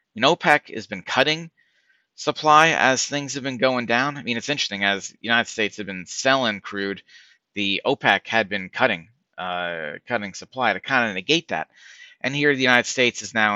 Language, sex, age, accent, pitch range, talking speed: English, male, 30-49, American, 100-145 Hz, 195 wpm